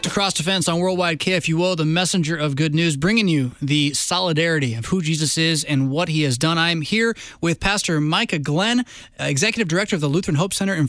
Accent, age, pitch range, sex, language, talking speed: American, 20-39, 145-185 Hz, male, English, 210 wpm